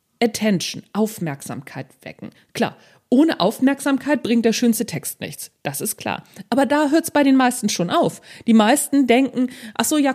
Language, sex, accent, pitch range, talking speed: German, female, German, 215-285 Hz, 170 wpm